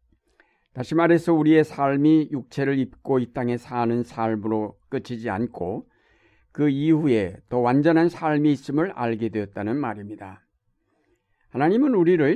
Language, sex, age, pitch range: Korean, male, 60-79, 120-155 Hz